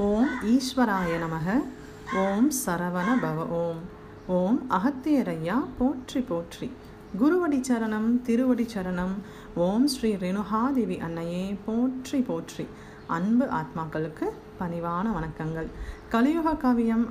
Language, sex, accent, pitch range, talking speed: Tamil, female, native, 175-245 Hz, 95 wpm